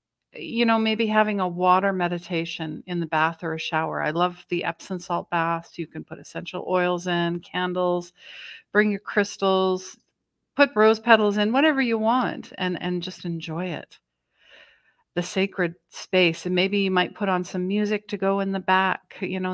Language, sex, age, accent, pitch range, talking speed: English, female, 50-69, American, 170-200 Hz, 180 wpm